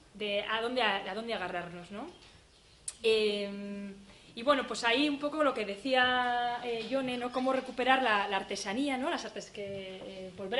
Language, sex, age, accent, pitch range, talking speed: Spanish, female, 20-39, Spanish, 200-240 Hz, 165 wpm